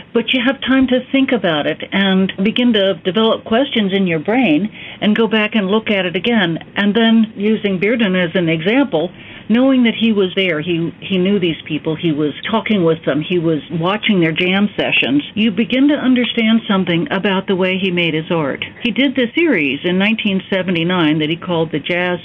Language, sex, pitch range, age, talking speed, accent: English, female, 175-225 Hz, 60-79, 200 wpm, American